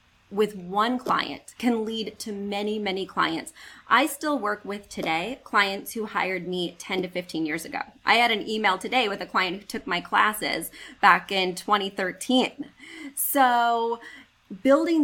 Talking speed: 160 wpm